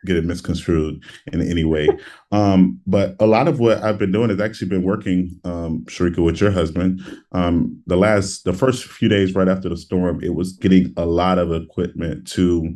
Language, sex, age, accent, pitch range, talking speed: English, male, 30-49, American, 85-100 Hz, 200 wpm